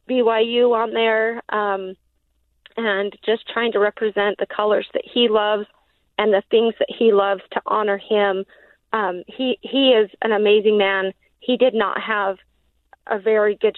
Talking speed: 160 wpm